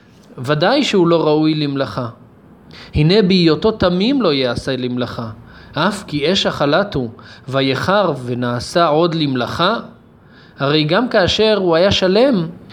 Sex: male